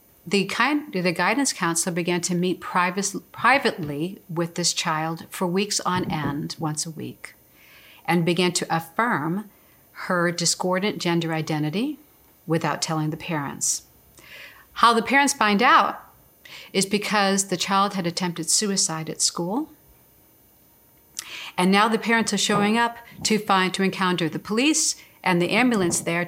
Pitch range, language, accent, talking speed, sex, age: 165-205 Hz, English, American, 145 wpm, female, 50-69